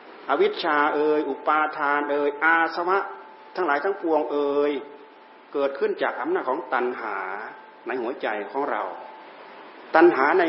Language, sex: Thai, male